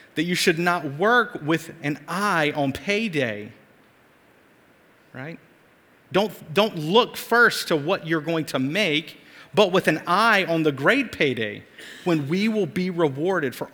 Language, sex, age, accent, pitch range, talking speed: English, male, 40-59, American, 125-175 Hz, 155 wpm